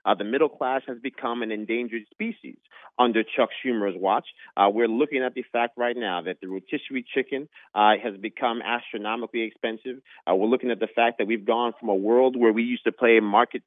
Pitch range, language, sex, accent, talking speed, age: 115-145 Hz, English, male, American, 210 wpm, 30-49